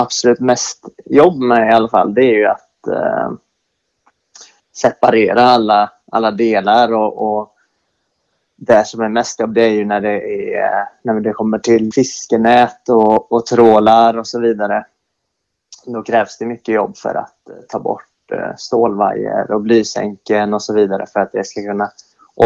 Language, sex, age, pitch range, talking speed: Swedish, male, 20-39, 105-120 Hz, 165 wpm